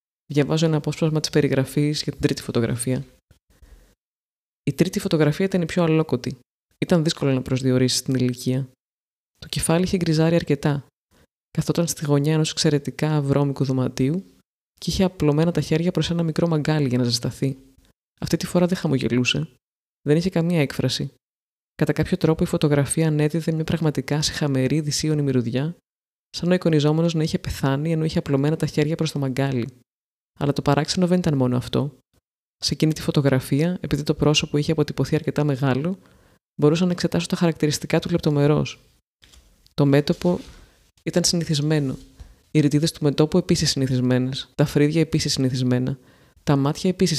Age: 20-39